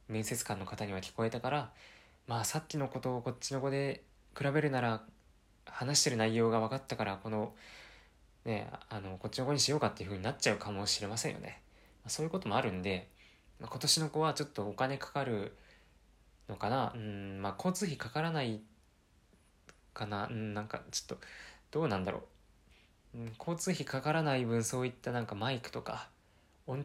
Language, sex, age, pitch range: Japanese, male, 20-39, 105-130 Hz